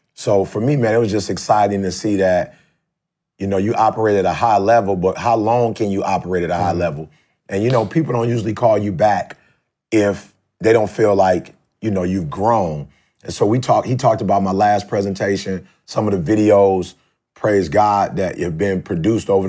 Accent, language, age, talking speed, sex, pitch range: American, English, 30-49, 210 wpm, male, 95-110 Hz